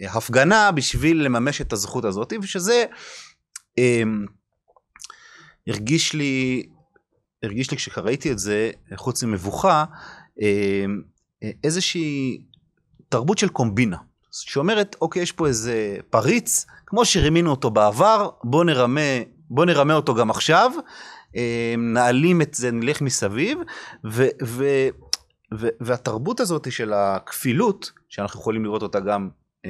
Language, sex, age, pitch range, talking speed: Hebrew, male, 30-49, 110-165 Hz, 115 wpm